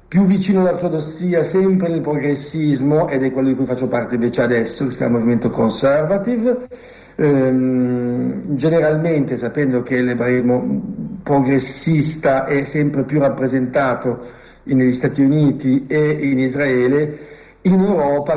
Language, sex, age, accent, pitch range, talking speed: Italian, male, 50-69, native, 125-155 Hz, 125 wpm